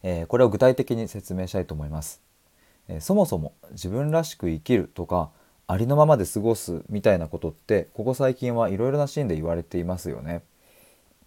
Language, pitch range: Japanese, 85-125 Hz